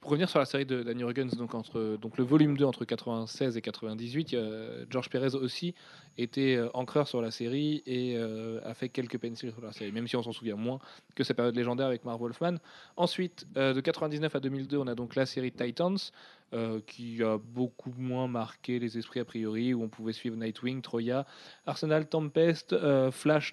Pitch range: 115-145 Hz